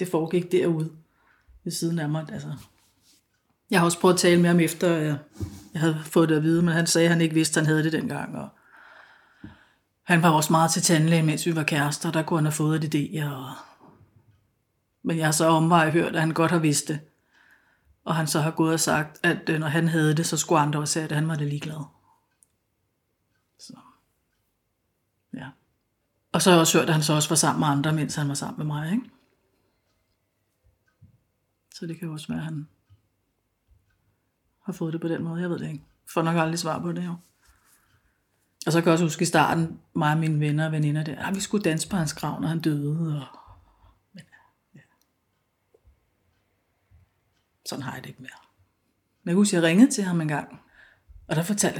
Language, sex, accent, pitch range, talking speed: Danish, female, native, 135-170 Hz, 210 wpm